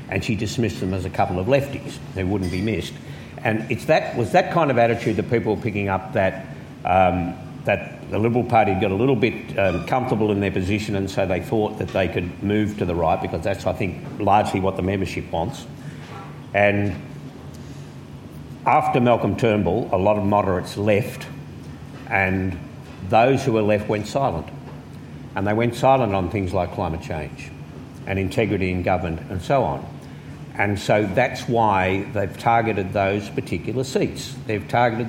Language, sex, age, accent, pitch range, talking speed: English, male, 50-69, Australian, 95-130 Hz, 180 wpm